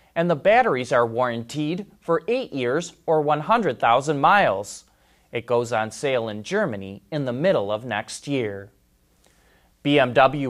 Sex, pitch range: male, 120-190 Hz